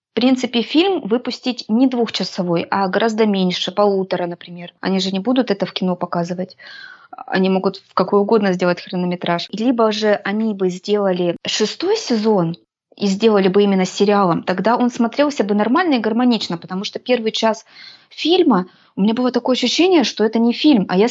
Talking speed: 175 wpm